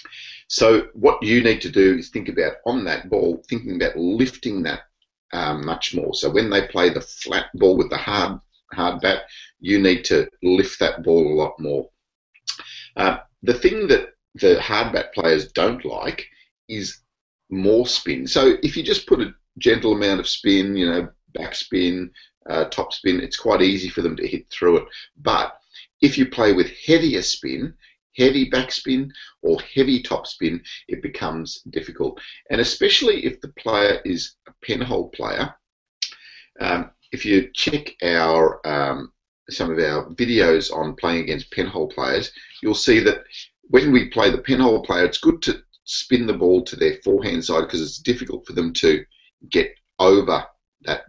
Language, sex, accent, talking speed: English, male, Australian, 170 wpm